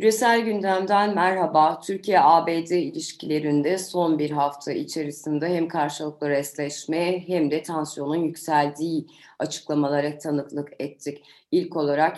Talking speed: 105 wpm